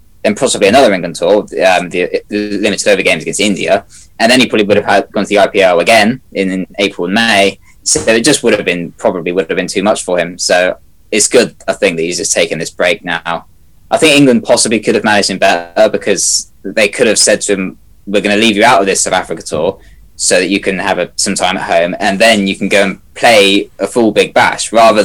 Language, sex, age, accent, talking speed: English, male, 20-39, British, 250 wpm